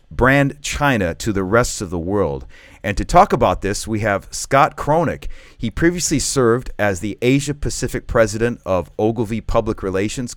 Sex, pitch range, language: male, 95-120 Hz, English